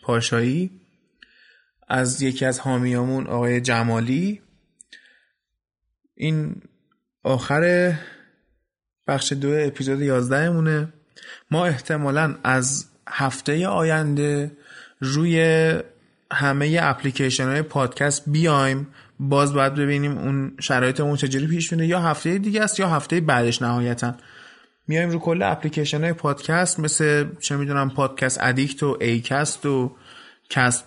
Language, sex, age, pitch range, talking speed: Persian, male, 20-39, 130-165 Hz, 105 wpm